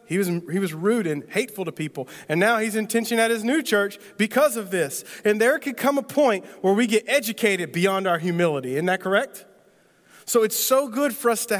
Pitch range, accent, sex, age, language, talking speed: 150-210 Hz, American, male, 40-59, English, 220 wpm